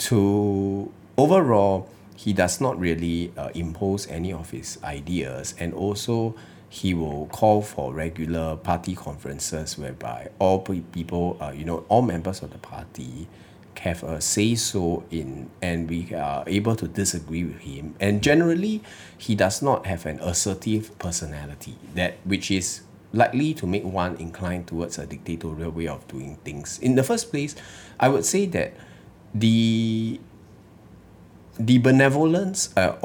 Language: English